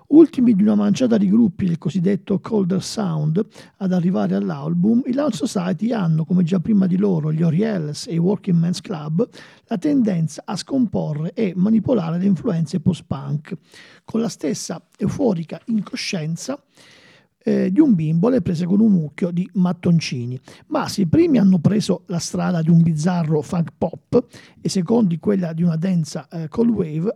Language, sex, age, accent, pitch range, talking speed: Italian, male, 50-69, native, 165-220 Hz, 170 wpm